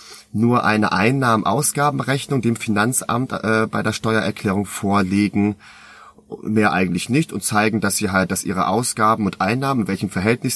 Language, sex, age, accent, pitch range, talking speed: German, male, 30-49, German, 90-115 Hz, 150 wpm